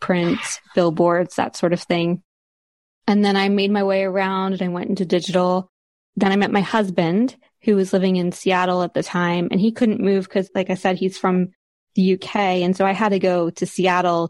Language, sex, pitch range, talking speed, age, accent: English, female, 180-200 Hz, 215 wpm, 20-39, American